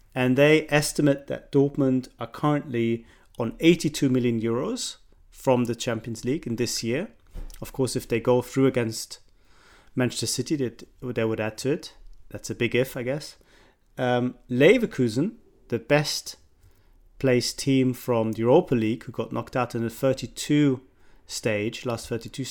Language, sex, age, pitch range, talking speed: English, male, 30-49, 115-135 Hz, 150 wpm